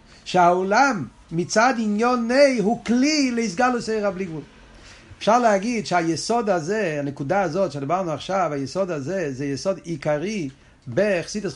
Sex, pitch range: male, 150-205 Hz